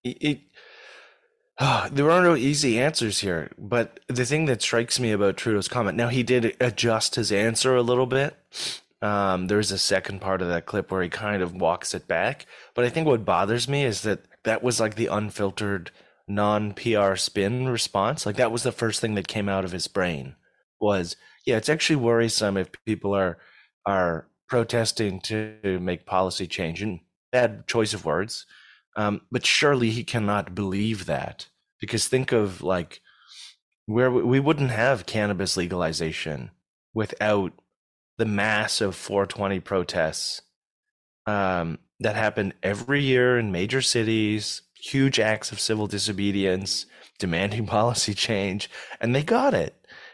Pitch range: 100-125 Hz